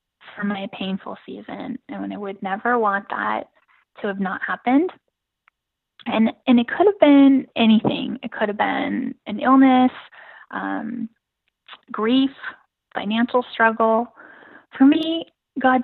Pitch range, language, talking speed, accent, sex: 210-260 Hz, English, 135 wpm, American, female